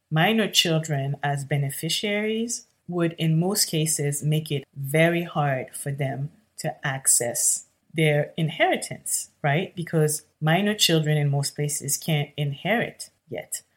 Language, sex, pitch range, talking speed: English, female, 145-175 Hz, 120 wpm